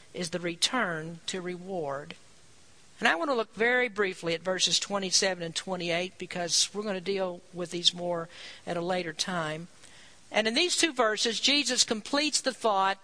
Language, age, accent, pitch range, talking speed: English, 50-69, American, 190-255 Hz, 175 wpm